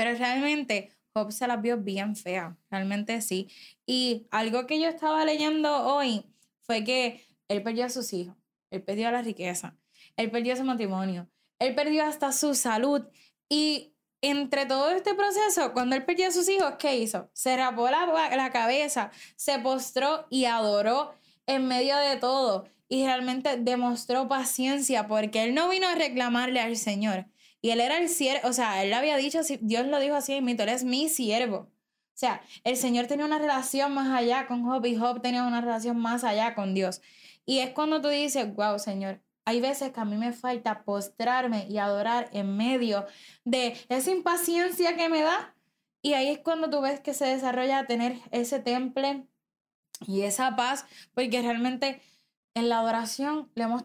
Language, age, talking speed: Spanish, 10-29, 185 wpm